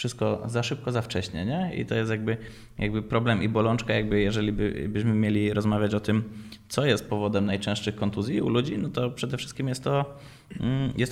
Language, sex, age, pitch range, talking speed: Polish, male, 20-39, 105-125 Hz, 195 wpm